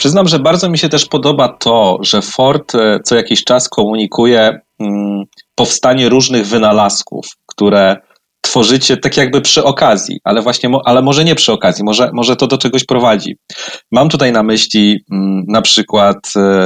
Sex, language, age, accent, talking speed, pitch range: male, Polish, 30-49, native, 150 wpm, 115-140 Hz